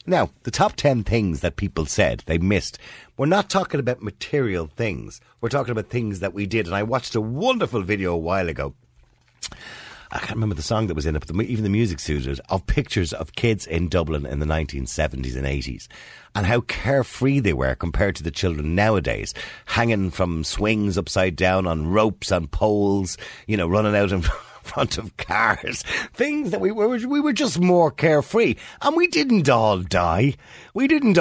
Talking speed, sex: 190 wpm, male